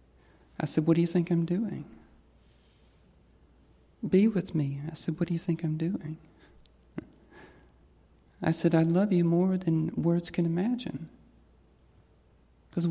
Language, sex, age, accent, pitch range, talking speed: English, male, 40-59, American, 145-170 Hz, 140 wpm